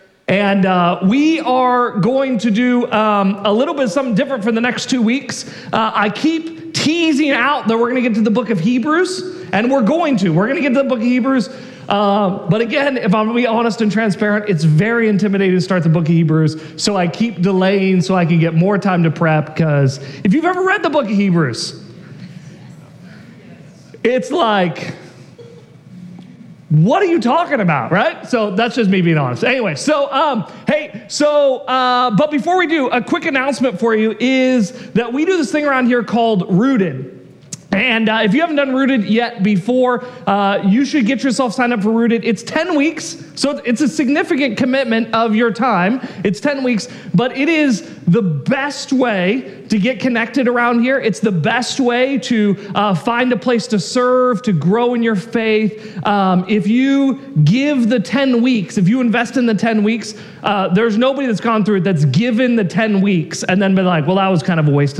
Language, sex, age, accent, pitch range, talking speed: English, male, 40-59, American, 190-255 Hz, 205 wpm